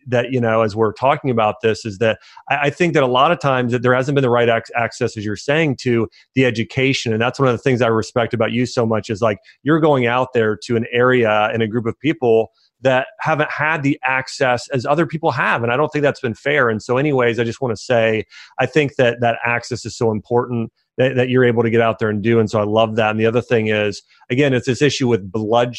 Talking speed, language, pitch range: 270 wpm, English, 115-145 Hz